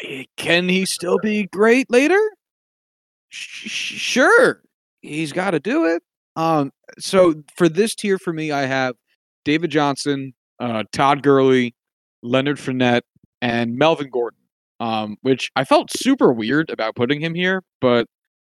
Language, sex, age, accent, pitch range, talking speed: English, male, 30-49, American, 120-155 Hz, 135 wpm